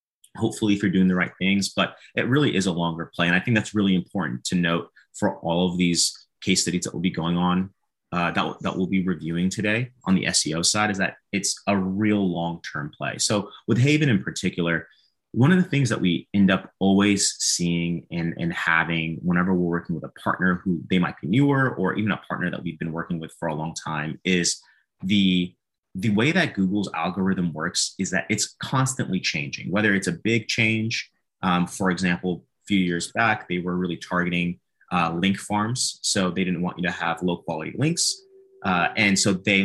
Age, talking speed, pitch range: 30-49, 210 wpm, 85-105 Hz